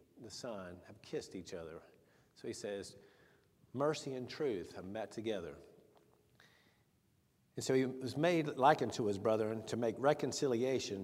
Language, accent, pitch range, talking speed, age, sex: English, American, 105-140 Hz, 145 wpm, 50-69, male